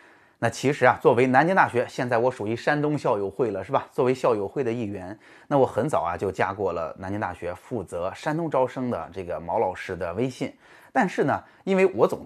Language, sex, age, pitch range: Chinese, male, 20-39, 110-155 Hz